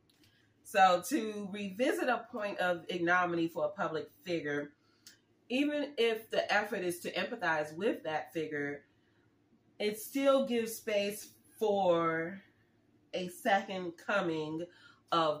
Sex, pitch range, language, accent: female, 155-200 Hz, English, American